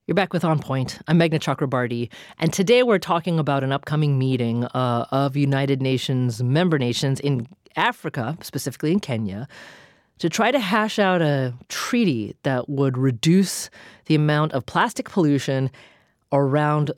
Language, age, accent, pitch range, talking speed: English, 30-49, American, 130-175 Hz, 150 wpm